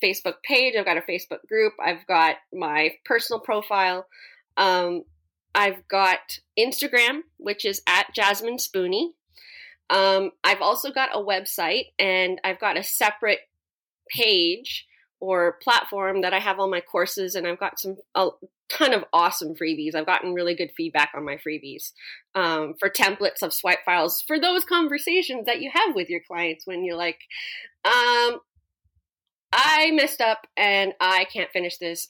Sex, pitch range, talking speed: female, 185-245 Hz, 160 wpm